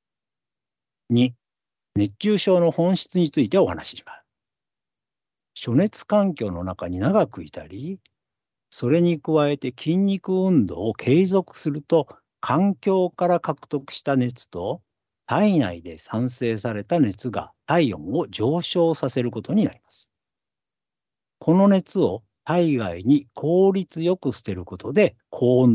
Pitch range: 120-180 Hz